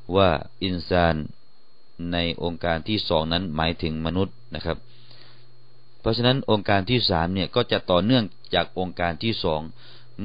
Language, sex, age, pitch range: Thai, male, 30-49, 95-120 Hz